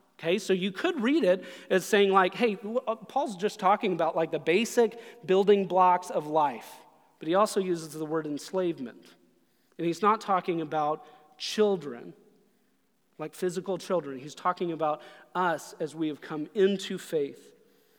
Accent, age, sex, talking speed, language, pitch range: American, 30-49, male, 155 wpm, English, 175-220 Hz